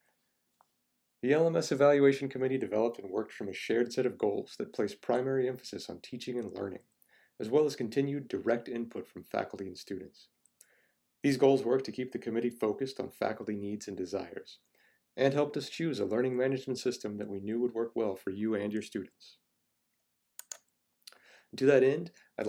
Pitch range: 105-130 Hz